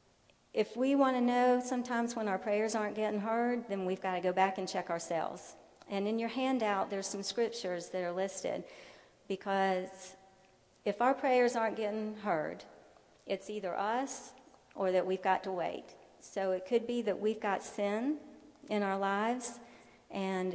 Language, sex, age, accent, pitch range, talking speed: English, female, 40-59, American, 195-230 Hz, 170 wpm